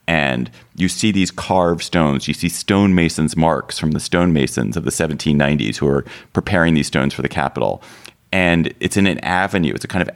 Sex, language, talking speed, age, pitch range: male, English, 195 wpm, 30-49, 80-100 Hz